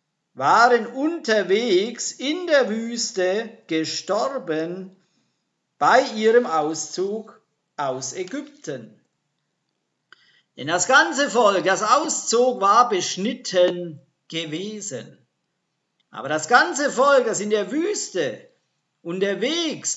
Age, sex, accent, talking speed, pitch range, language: 50-69, male, German, 85 wpm, 185-250 Hz, German